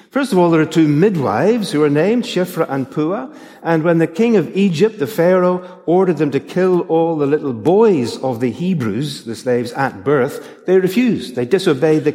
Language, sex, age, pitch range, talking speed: English, male, 60-79, 130-185 Hz, 200 wpm